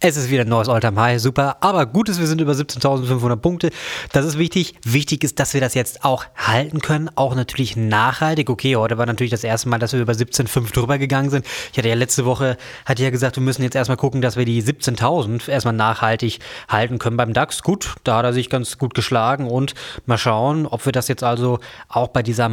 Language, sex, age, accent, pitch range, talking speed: German, male, 20-39, German, 115-140 Hz, 230 wpm